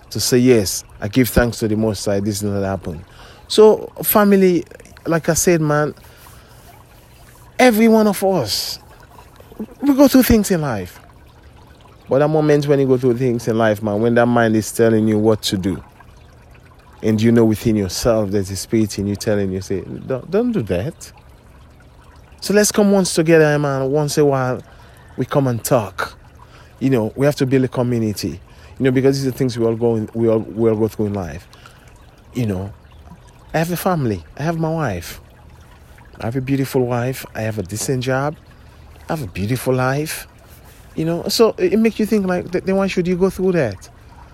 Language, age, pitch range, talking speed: English, 20-39, 110-165 Hz, 200 wpm